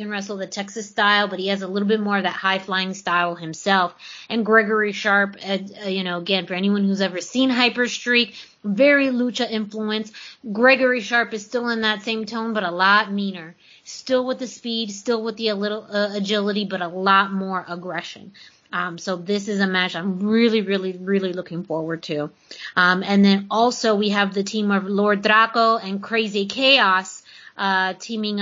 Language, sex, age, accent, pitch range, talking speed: English, female, 20-39, American, 190-225 Hz, 190 wpm